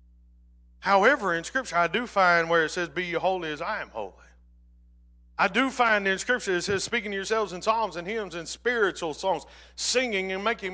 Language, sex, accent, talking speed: English, male, American, 200 wpm